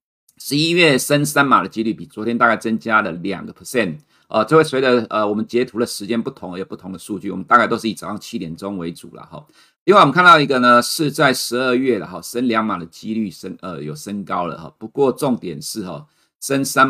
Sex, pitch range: male, 95-120 Hz